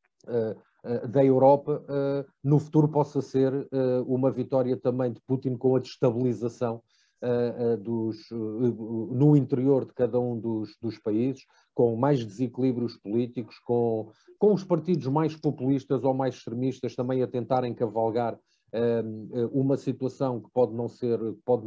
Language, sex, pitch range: Portuguese, male, 120-145 Hz